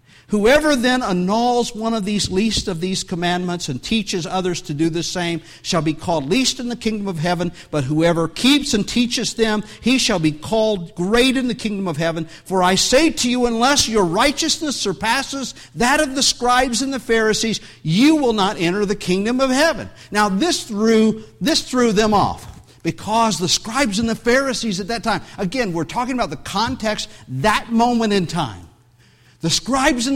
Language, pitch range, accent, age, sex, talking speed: English, 155-240 Hz, American, 50-69, male, 190 wpm